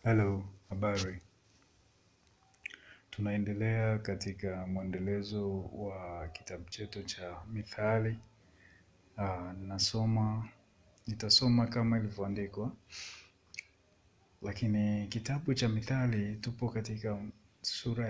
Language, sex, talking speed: Swahili, male, 70 wpm